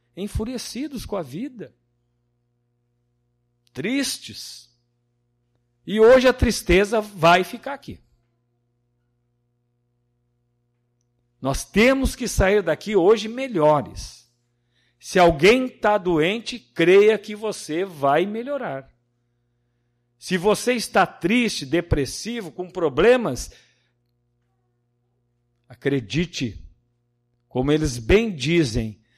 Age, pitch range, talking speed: 50-69, 120-175 Hz, 80 wpm